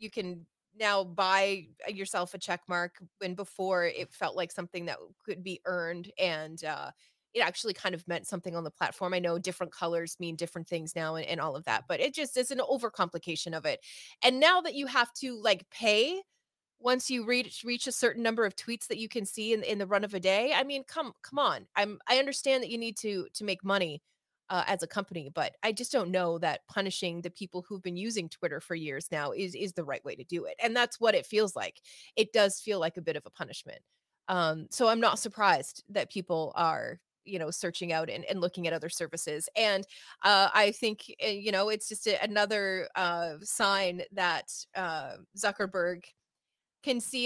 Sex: female